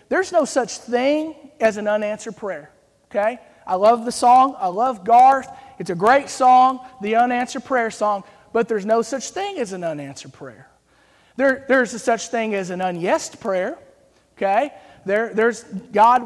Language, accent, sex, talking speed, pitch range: English, American, male, 170 wpm, 200-245 Hz